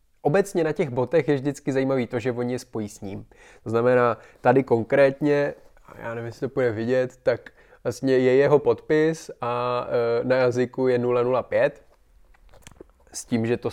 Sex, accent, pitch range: male, native, 120-140 Hz